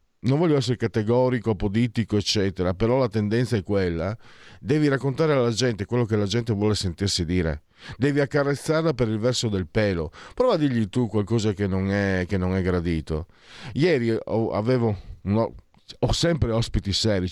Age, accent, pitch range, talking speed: 50-69, native, 105-135 Hz, 165 wpm